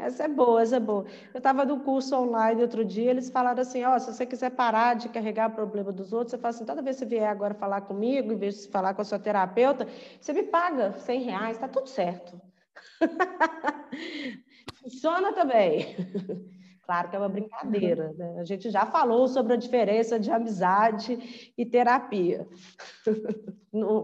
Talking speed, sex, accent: 180 wpm, female, Brazilian